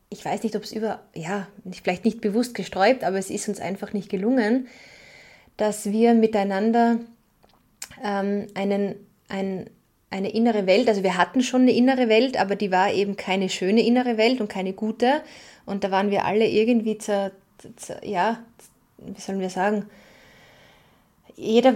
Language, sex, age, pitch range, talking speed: German, female, 20-39, 200-230 Hz, 165 wpm